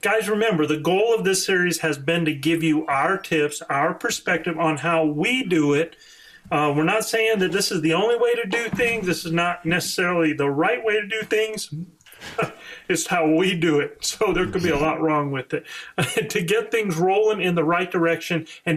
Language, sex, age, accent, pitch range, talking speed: English, male, 40-59, American, 160-210 Hz, 215 wpm